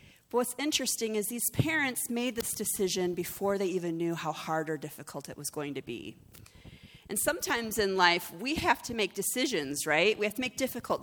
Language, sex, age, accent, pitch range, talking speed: English, female, 30-49, American, 150-180 Hz, 200 wpm